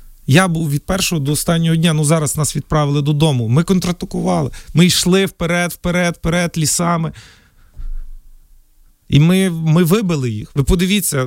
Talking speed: 145 wpm